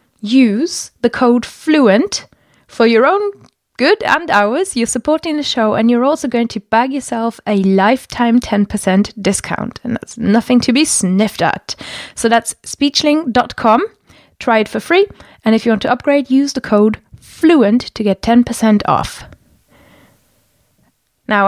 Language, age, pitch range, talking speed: English, 20-39, 205-250 Hz, 150 wpm